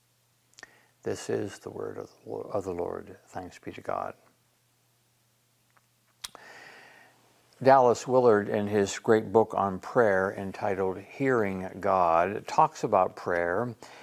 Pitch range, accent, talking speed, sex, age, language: 105-140 Hz, American, 105 wpm, male, 60-79, English